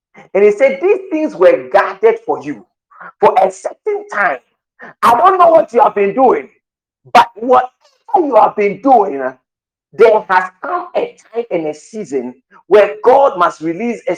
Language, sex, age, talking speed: English, male, 50-69, 170 wpm